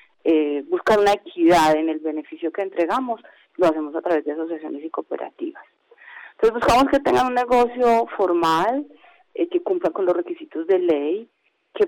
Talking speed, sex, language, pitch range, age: 165 wpm, female, Spanish, 155-205 Hz, 30-49